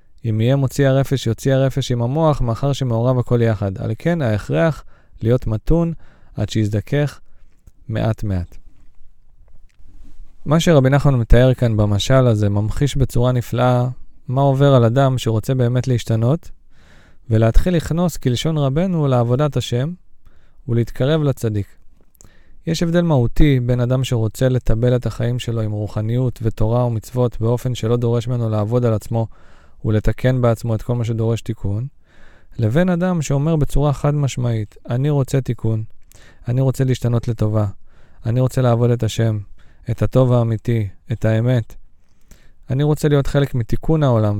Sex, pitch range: male, 110-135 Hz